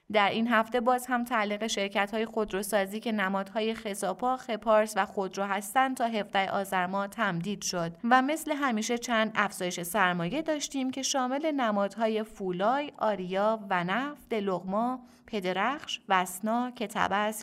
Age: 30-49